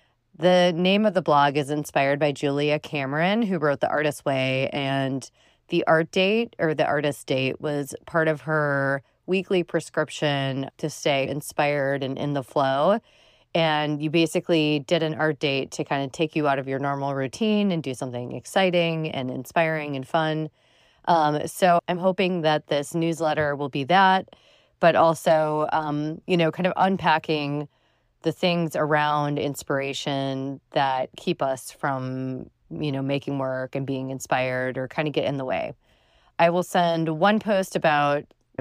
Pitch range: 140-165 Hz